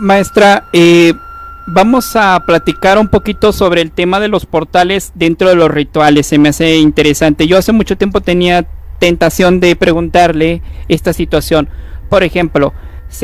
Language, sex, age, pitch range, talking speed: Spanish, male, 50-69, 170-210 Hz, 155 wpm